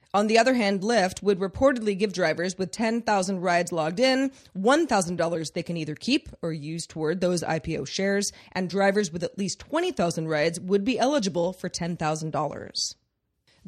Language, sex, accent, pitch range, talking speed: English, female, American, 175-220 Hz, 160 wpm